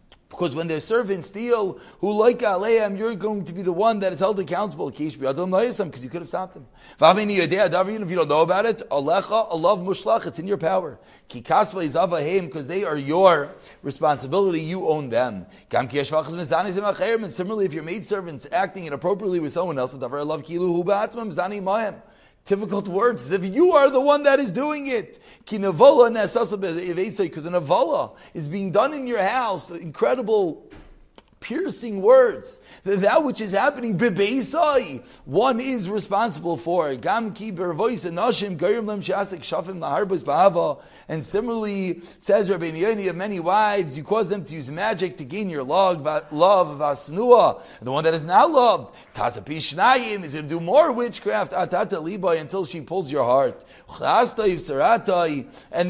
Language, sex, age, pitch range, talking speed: English, male, 30-49, 170-220 Hz, 135 wpm